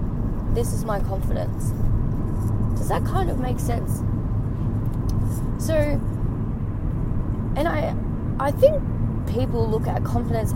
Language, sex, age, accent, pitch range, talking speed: English, female, 20-39, Australian, 105-115 Hz, 110 wpm